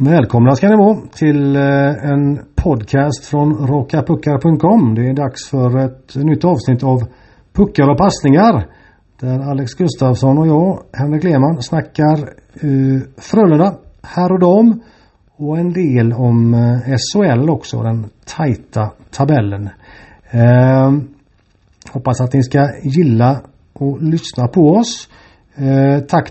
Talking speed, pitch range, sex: 125 wpm, 125-160 Hz, male